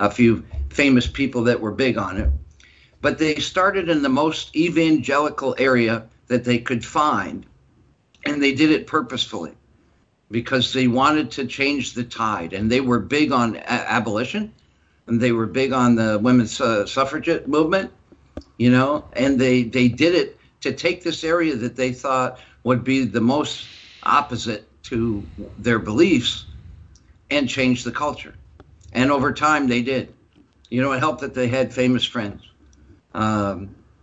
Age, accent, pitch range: 60-79, American, 110-140 Hz